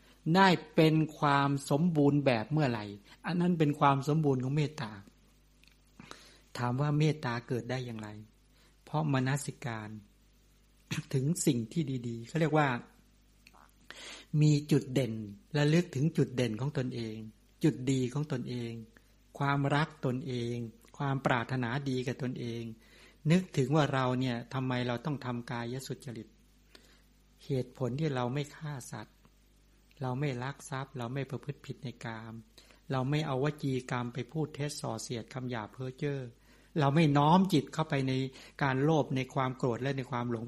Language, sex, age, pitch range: English, male, 60-79, 125-150 Hz